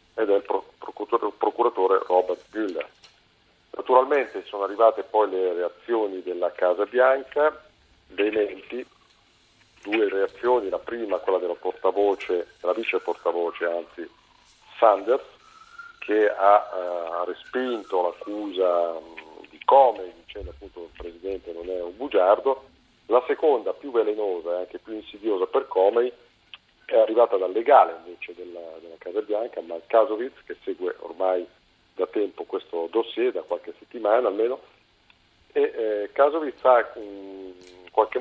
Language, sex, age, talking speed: Italian, male, 40-59, 130 wpm